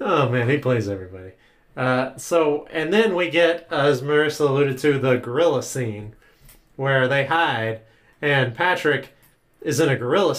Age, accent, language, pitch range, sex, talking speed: 30-49, American, English, 130-170 Hz, male, 160 wpm